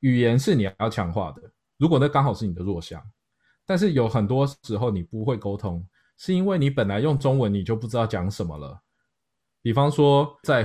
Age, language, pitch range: 20-39, Chinese, 100-140 Hz